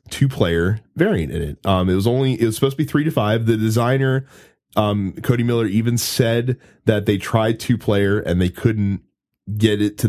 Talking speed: 210 wpm